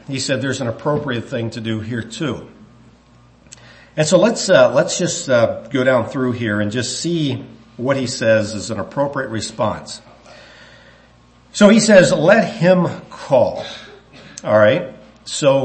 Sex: male